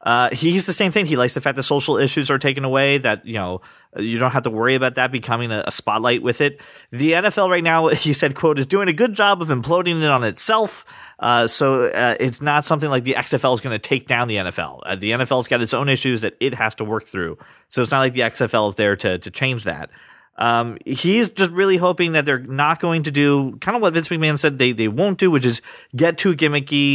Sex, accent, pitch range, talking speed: male, American, 125-165 Hz, 255 wpm